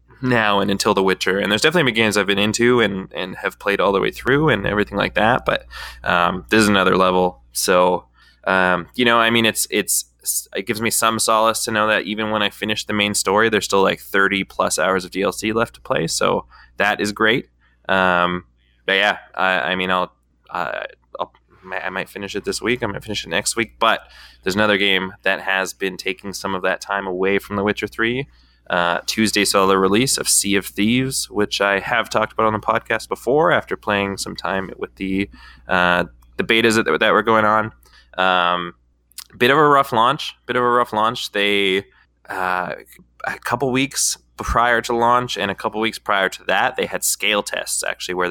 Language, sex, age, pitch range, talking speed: English, male, 20-39, 90-110 Hz, 210 wpm